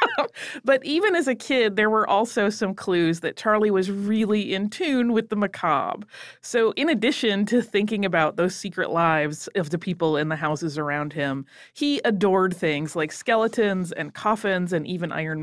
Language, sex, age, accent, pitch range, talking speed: English, female, 30-49, American, 175-265 Hz, 180 wpm